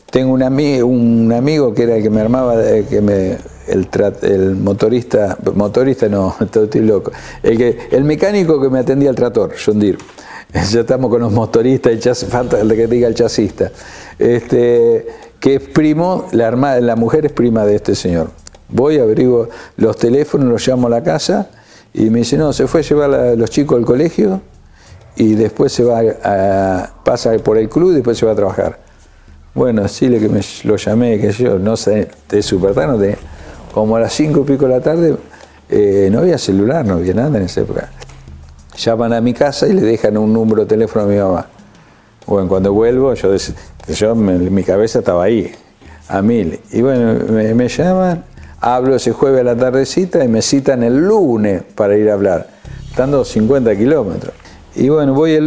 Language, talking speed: Spanish, 200 wpm